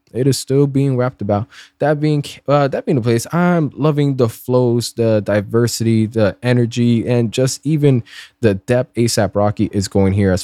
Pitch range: 105-130 Hz